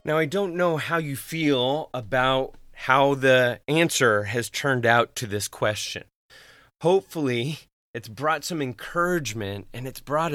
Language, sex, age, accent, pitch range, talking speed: English, male, 30-49, American, 110-145 Hz, 145 wpm